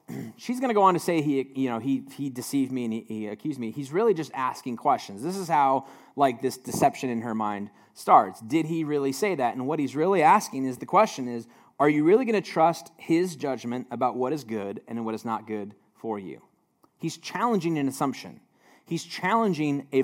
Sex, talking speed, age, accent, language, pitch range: male, 220 wpm, 30-49, American, English, 120-170 Hz